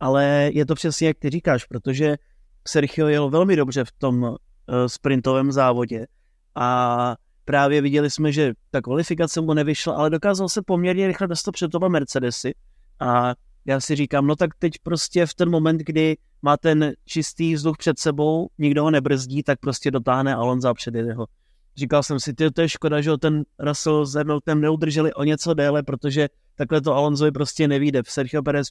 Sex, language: male, Czech